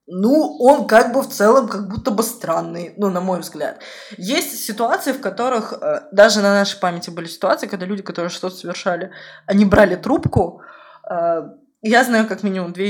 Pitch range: 185-230 Hz